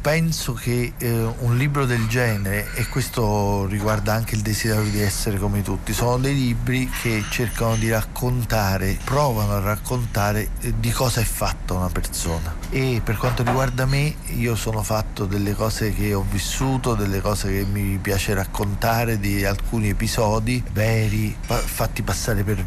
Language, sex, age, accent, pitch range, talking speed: Italian, male, 50-69, native, 105-125 Hz, 160 wpm